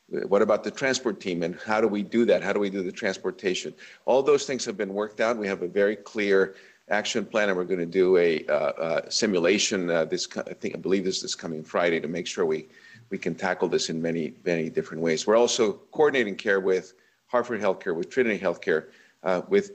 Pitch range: 90-105 Hz